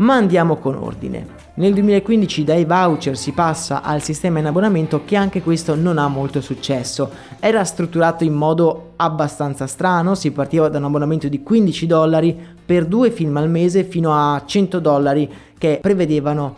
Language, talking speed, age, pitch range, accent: Italian, 165 wpm, 20-39, 150-185 Hz, native